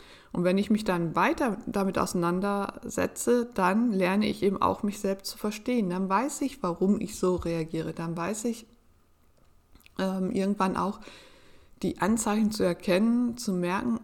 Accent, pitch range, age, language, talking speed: German, 170-215 Hz, 60-79, German, 155 wpm